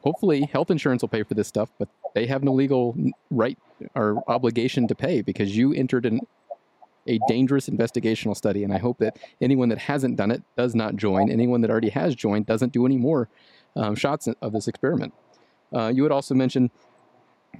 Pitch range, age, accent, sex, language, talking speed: 110-135 Hz, 30-49, American, male, English, 200 wpm